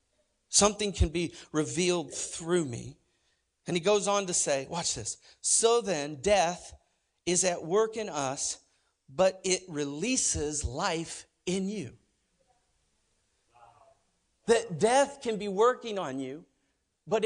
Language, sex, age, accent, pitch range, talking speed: English, male, 50-69, American, 180-275 Hz, 125 wpm